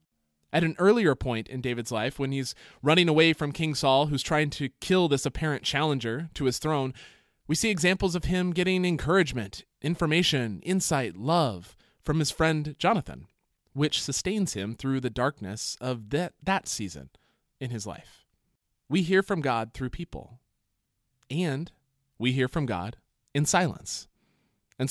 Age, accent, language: 20-39, American, English